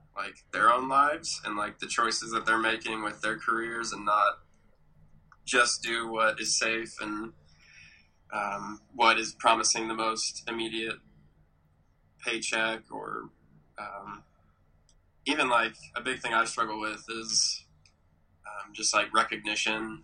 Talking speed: 135 wpm